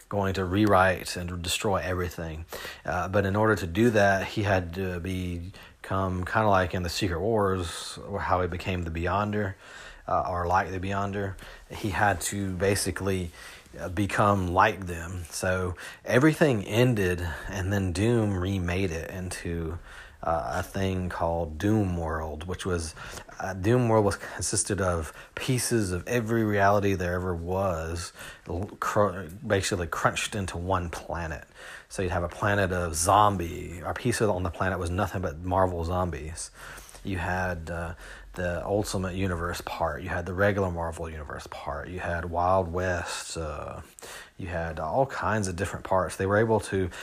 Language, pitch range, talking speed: English, 90-100 Hz, 160 wpm